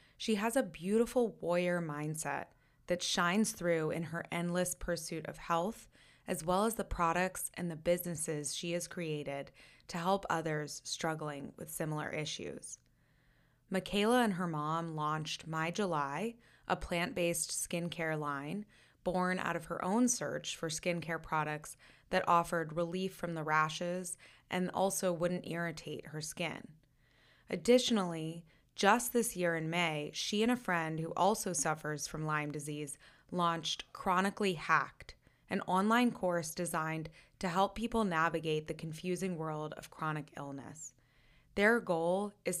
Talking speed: 140 wpm